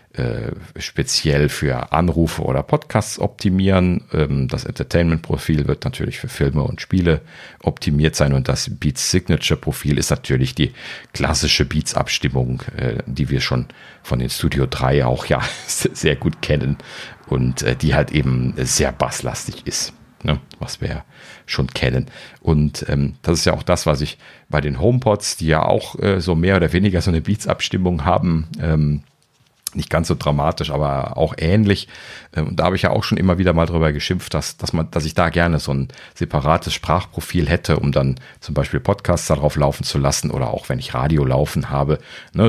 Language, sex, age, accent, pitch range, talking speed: German, male, 40-59, German, 70-90 Hz, 175 wpm